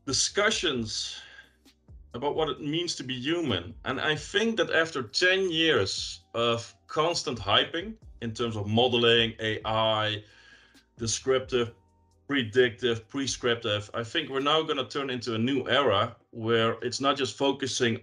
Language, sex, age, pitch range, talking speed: English, male, 30-49, 115-150 Hz, 140 wpm